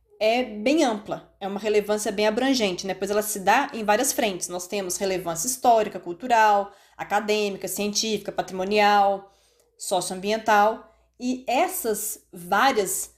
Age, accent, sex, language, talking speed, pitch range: 20-39, Brazilian, female, Portuguese, 125 wpm, 200-270 Hz